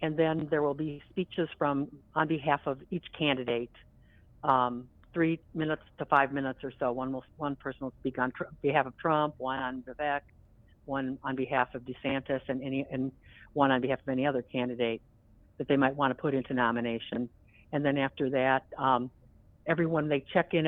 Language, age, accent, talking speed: English, 50-69, American, 185 wpm